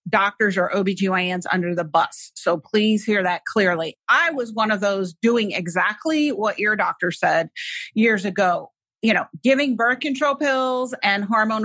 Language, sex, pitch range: English, female, 200-250 Hz